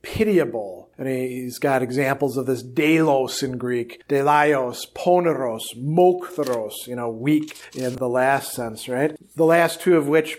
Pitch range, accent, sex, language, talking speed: 135-165 Hz, American, male, English, 160 wpm